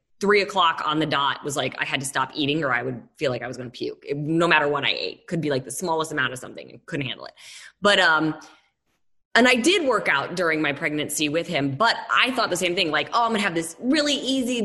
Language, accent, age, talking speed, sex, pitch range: English, American, 20-39, 265 wpm, female, 155-195 Hz